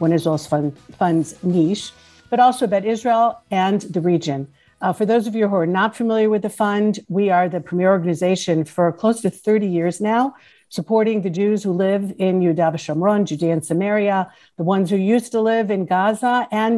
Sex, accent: female, American